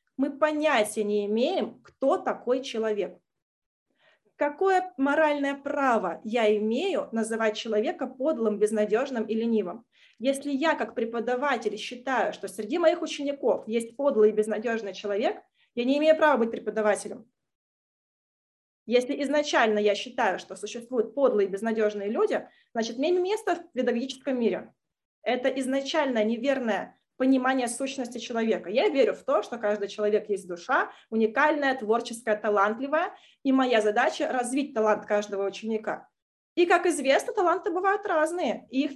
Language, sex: Russian, female